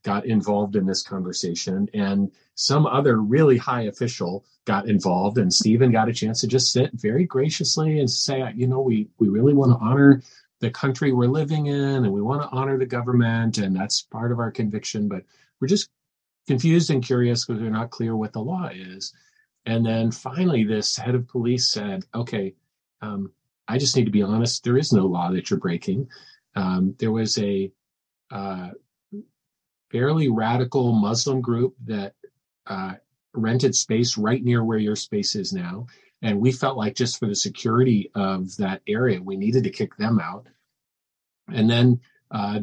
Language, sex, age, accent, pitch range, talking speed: English, male, 40-59, American, 105-130 Hz, 180 wpm